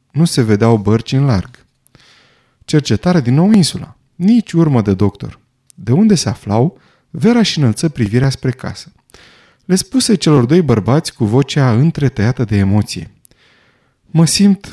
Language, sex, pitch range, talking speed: Romanian, male, 115-165 Hz, 150 wpm